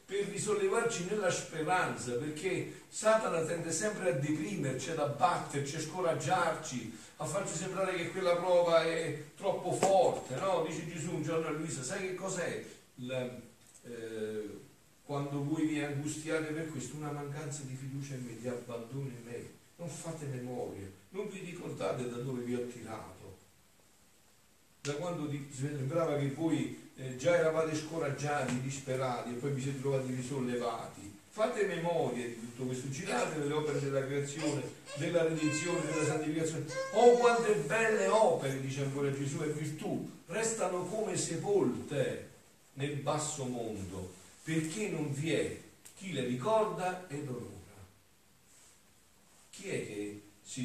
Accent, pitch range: native, 125-165 Hz